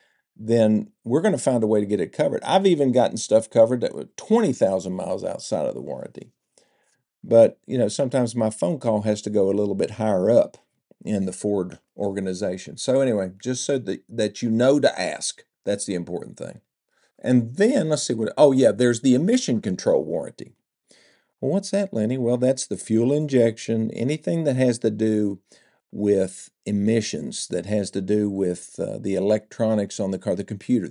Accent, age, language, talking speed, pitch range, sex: American, 50-69, English, 190 wpm, 100-125 Hz, male